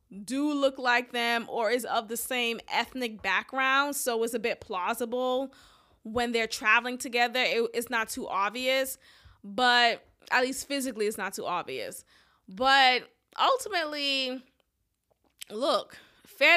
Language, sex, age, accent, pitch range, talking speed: English, female, 20-39, American, 235-295 Hz, 135 wpm